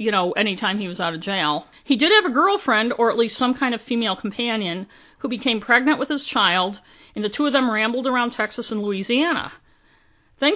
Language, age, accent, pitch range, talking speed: English, 50-69, American, 190-235 Hz, 220 wpm